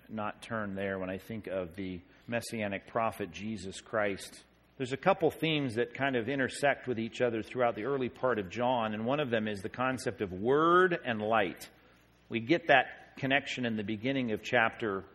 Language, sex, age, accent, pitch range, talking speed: English, male, 40-59, American, 110-150 Hz, 195 wpm